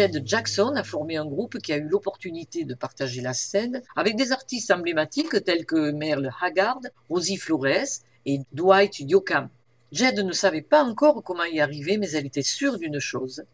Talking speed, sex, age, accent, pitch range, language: 180 wpm, female, 50-69, French, 145-215 Hz, French